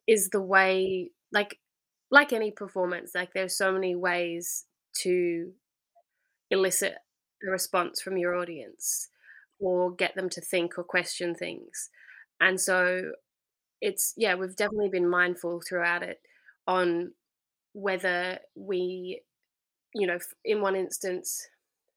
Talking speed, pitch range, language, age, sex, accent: 125 wpm, 180-200 Hz, English, 20-39, female, Australian